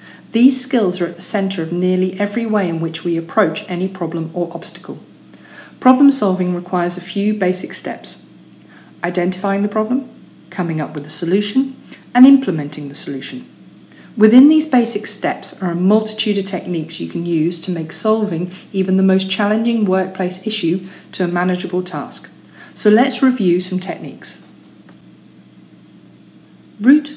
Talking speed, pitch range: 150 wpm, 175-220 Hz